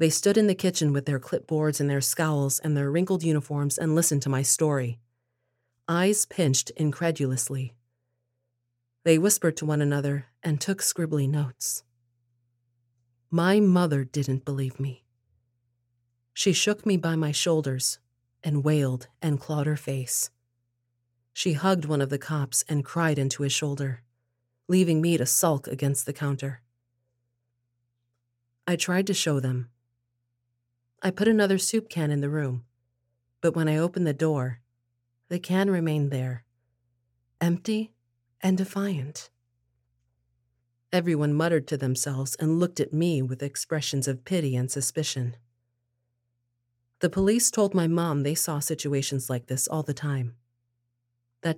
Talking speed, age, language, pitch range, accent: 140 wpm, 40-59, English, 120-160 Hz, American